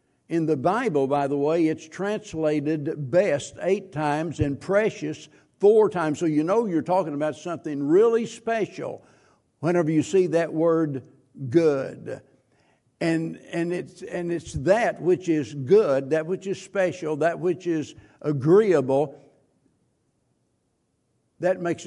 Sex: male